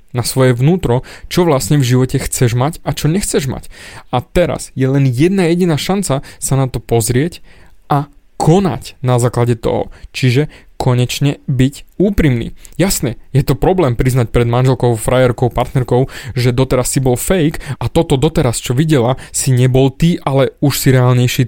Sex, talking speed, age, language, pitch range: male, 165 wpm, 20-39, Slovak, 125-160 Hz